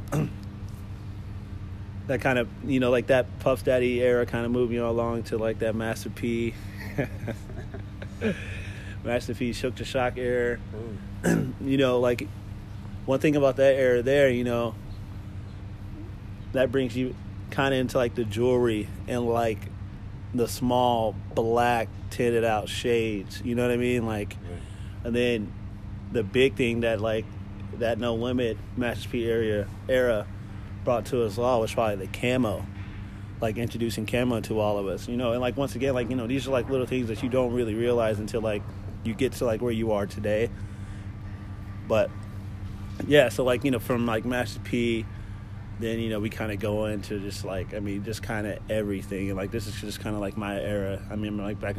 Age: 30-49